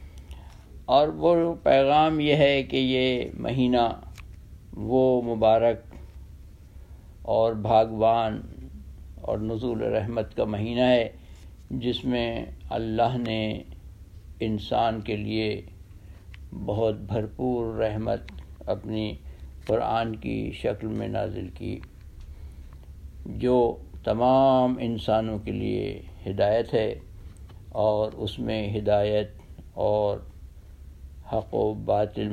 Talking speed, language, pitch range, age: 95 wpm, Urdu, 80-125 Hz, 60-79